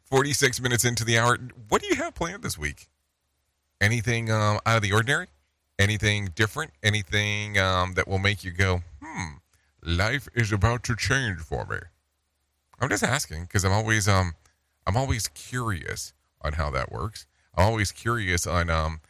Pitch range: 75-110 Hz